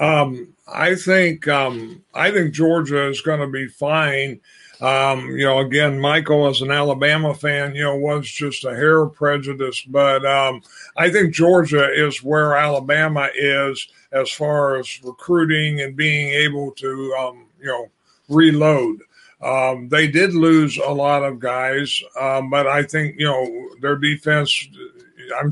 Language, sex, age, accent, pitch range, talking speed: English, male, 50-69, American, 135-150 Hz, 155 wpm